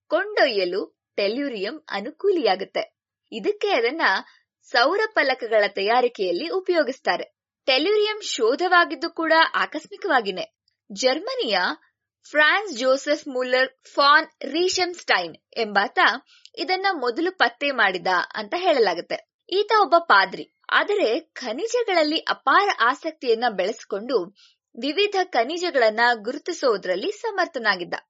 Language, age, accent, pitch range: English, 20-39, Indian, 270-385 Hz